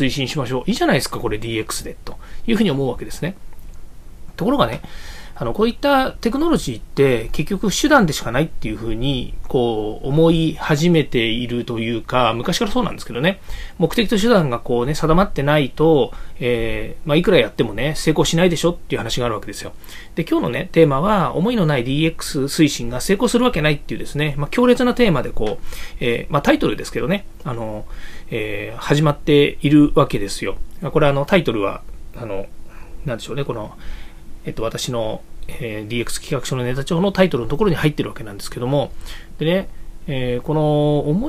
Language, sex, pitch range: Japanese, male, 120-175 Hz